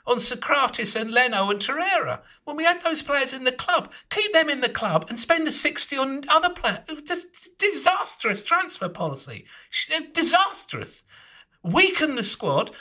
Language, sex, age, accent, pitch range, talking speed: English, male, 50-69, British, 195-320 Hz, 160 wpm